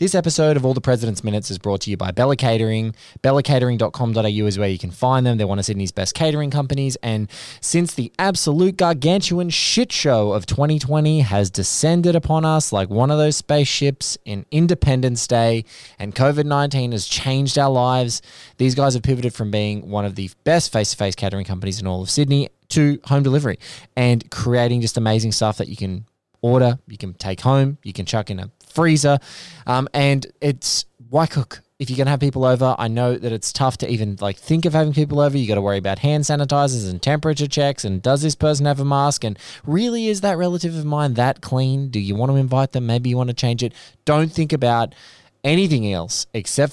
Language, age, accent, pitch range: English, 20-39, Australian, 105-145 Hz